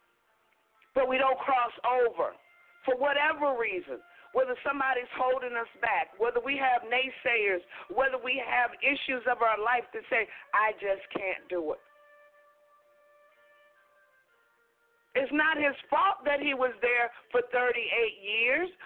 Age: 50-69